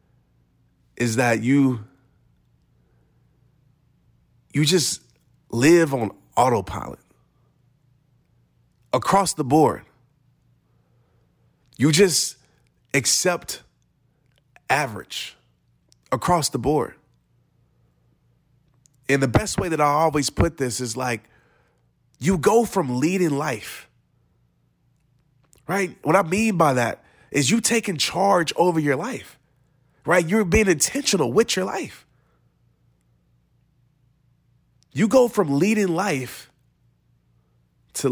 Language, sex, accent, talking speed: English, male, American, 95 wpm